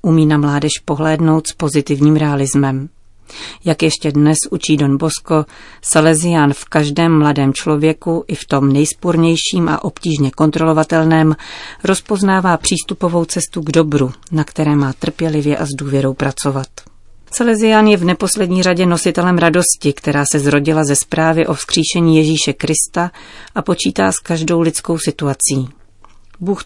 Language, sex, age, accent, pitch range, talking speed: Czech, female, 40-59, native, 140-170 Hz, 135 wpm